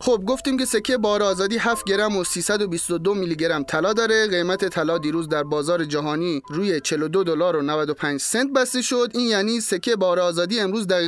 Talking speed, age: 190 wpm, 30-49